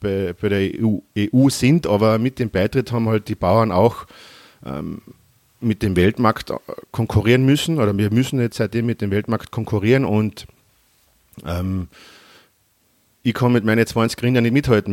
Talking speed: 160 wpm